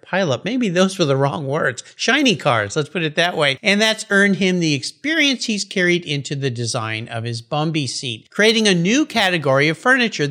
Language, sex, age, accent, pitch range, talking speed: English, male, 50-69, American, 145-215 Hz, 210 wpm